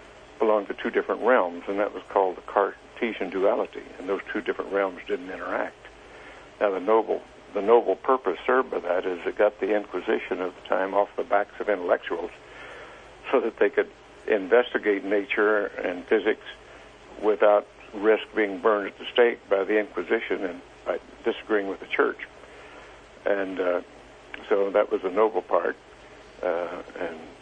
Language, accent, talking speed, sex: English, American, 165 wpm, male